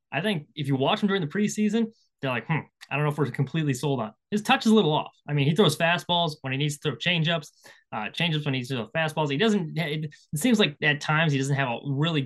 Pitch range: 140-180 Hz